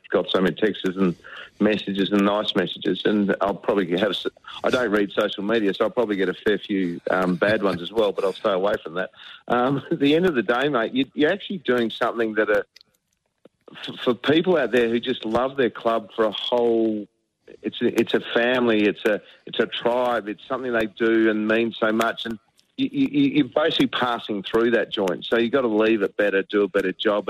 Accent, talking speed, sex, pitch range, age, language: Australian, 225 wpm, male, 100-120 Hz, 40-59, English